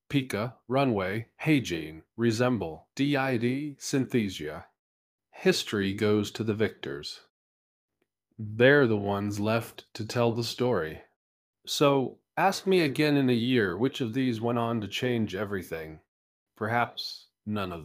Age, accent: 40-59, American